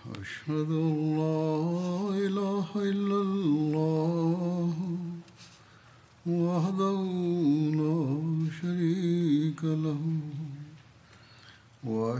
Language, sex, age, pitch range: Turkish, male, 60-79, 140-185 Hz